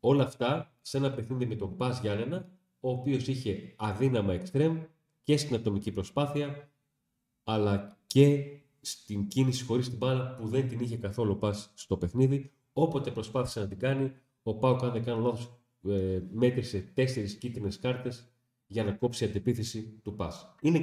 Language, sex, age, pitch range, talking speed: Greek, male, 40-59, 105-130 Hz, 160 wpm